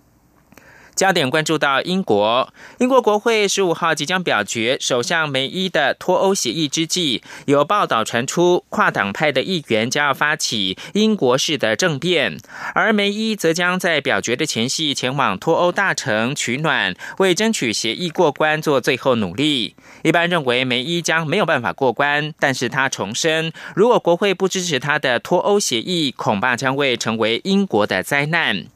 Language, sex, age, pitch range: German, male, 30-49, 145-195 Hz